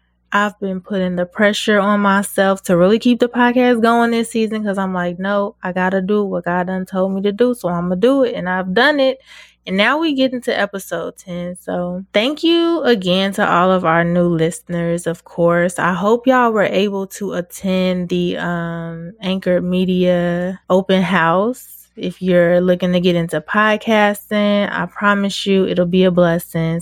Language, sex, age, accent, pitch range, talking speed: English, female, 20-39, American, 175-205 Hz, 190 wpm